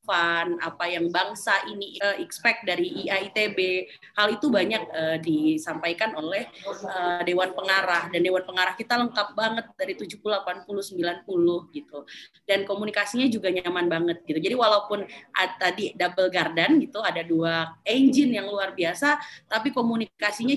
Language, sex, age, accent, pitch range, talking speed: Indonesian, female, 20-39, native, 185-255 Hz, 135 wpm